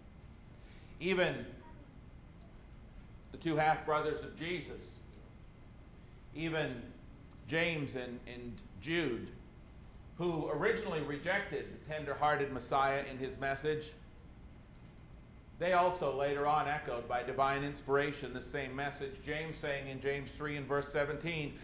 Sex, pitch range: male, 130-165 Hz